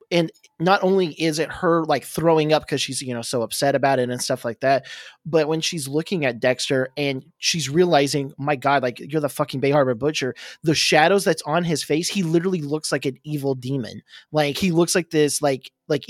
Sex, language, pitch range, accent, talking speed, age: male, English, 130-160 Hz, American, 220 wpm, 20-39